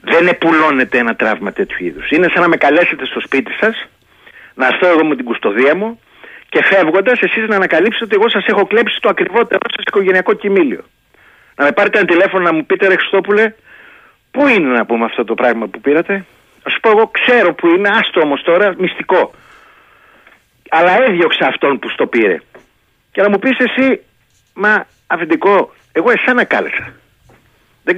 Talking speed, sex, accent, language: 180 wpm, male, native, Greek